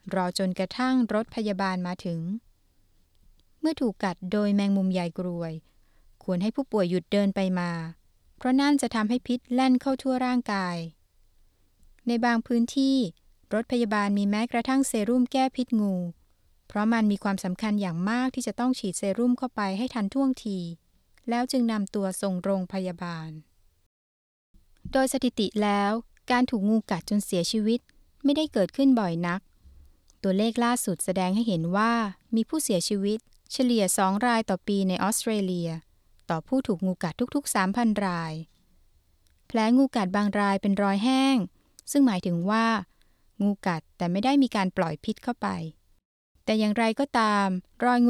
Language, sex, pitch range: Thai, female, 185-245 Hz